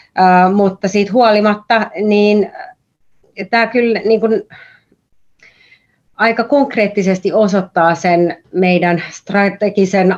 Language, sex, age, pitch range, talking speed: Finnish, female, 30-49, 170-210 Hz, 85 wpm